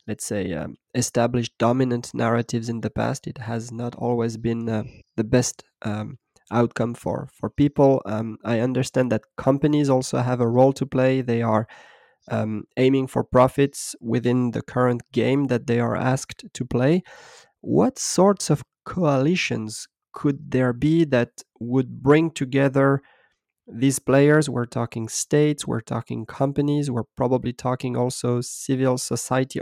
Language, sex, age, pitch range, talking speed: French, male, 20-39, 120-145 Hz, 150 wpm